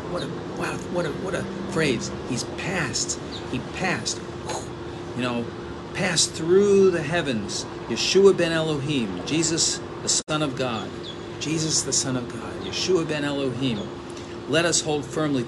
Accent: American